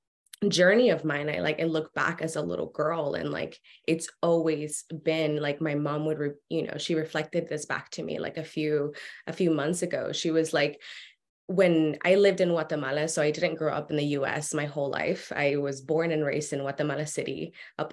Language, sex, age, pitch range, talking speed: English, female, 20-39, 150-170 Hz, 215 wpm